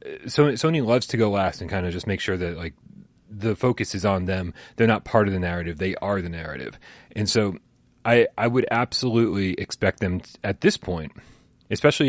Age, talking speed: 30-49, 205 wpm